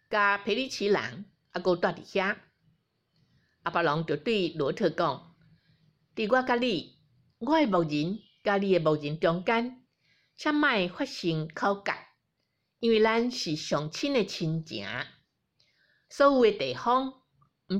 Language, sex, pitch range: Chinese, female, 150-225 Hz